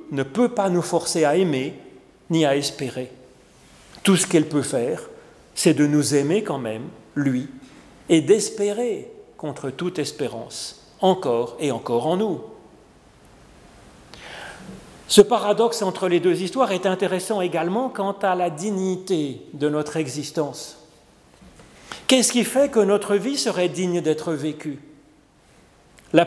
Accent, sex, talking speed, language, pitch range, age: French, male, 135 wpm, French, 150-205 Hz, 40-59